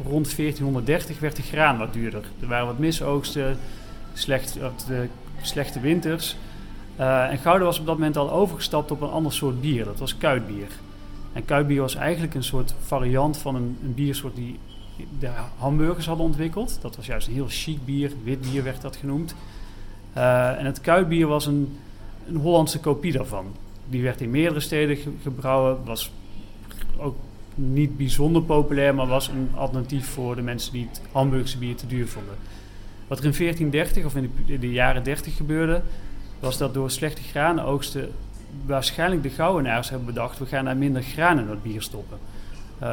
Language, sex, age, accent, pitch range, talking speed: Dutch, male, 40-59, Dutch, 120-150 Hz, 180 wpm